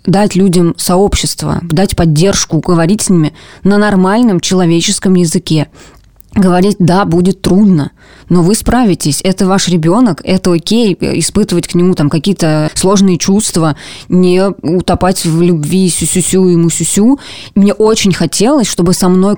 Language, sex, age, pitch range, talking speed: Russian, female, 20-39, 160-195 Hz, 140 wpm